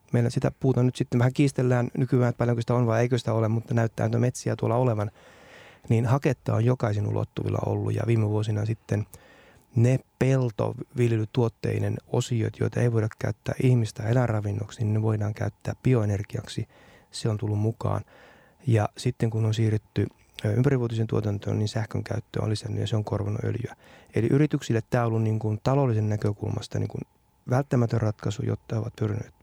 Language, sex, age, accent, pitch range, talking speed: Finnish, male, 30-49, native, 110-120 Hz, 170 wpm